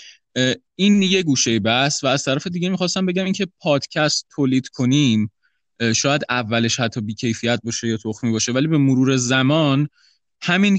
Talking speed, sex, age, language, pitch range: 150 wpm, male, 20-39, Persian, 115-150 Hz